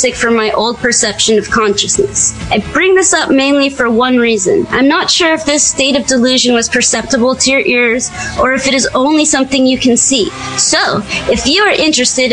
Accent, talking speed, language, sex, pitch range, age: American, 200 wpm, English, female, 235-290 Hz, 30-49